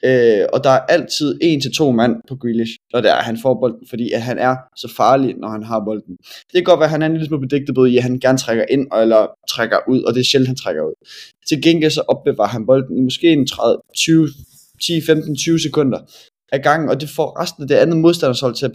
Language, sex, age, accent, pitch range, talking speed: Danish, male, 20-39, native, 125-150 Hz, 245 wpm